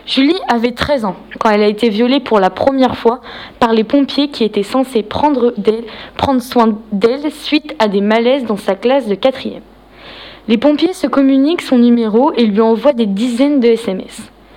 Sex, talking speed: female, 190 wpm